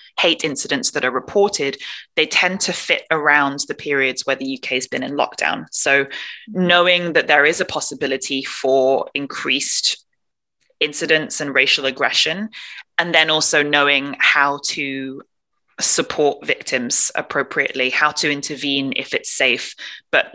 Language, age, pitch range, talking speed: English, 20-39, 135-160 Hz, 140 wpm